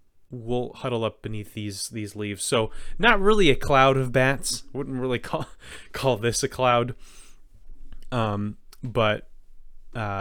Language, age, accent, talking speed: English, 20-39, American, 140 wpm